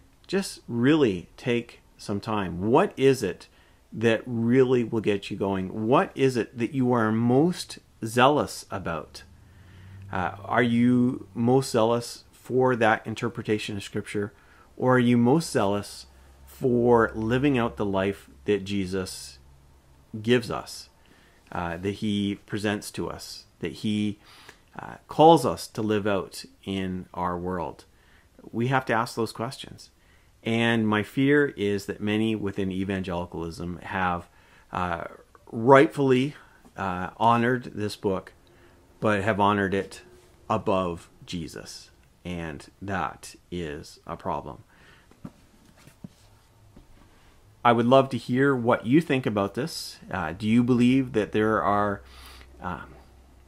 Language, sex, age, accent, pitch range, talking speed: English, male, 30-49, American, 95-120 Hz, 130 wpm